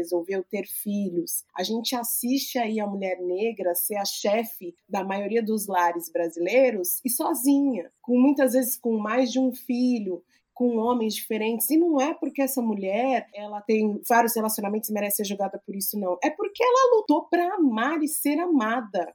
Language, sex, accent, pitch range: Portuguese, female, Brazilian, 195-255 Hz